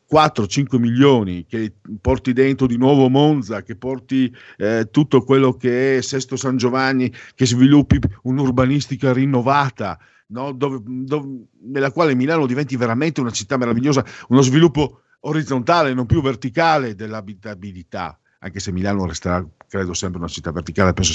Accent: native